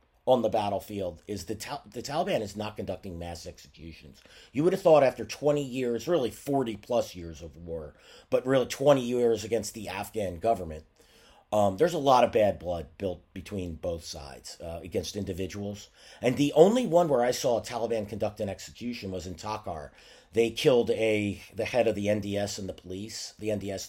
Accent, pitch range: American, 90-110 Hz